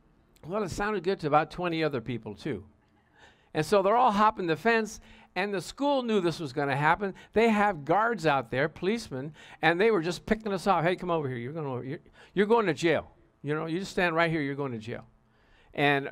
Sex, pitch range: male, 115-175 Hz